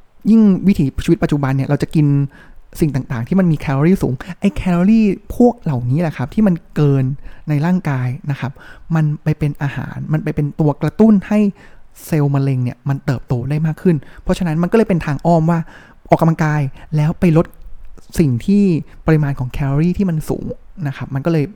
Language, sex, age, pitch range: Thai, male, 20-39, 140-185 Hz